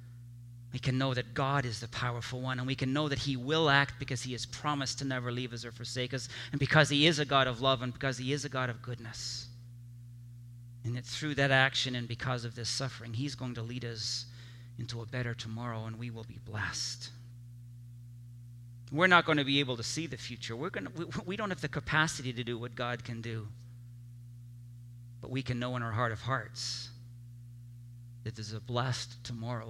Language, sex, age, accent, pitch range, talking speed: English, male, 40-59, American, 120-130 Hz, 215 wpm